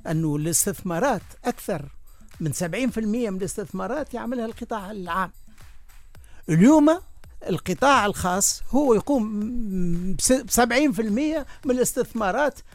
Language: Arabic